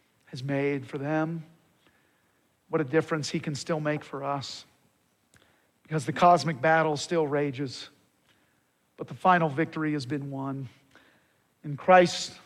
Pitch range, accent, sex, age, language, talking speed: 145-180 Hz, American, male, 50-69, English, 135 wpm